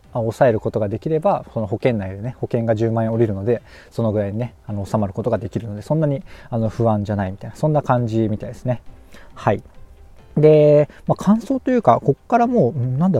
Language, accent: Japanese, native